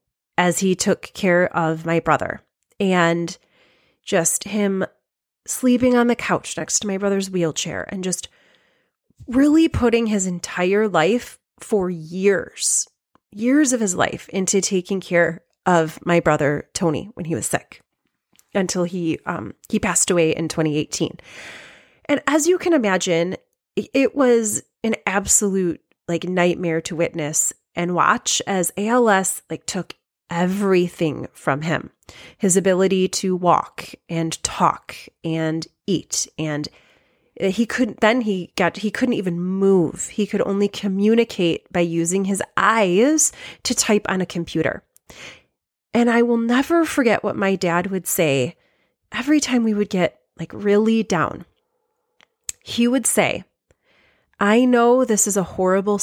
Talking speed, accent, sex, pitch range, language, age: 140 wpm, American, female, 170-225 Hz, English, 30-49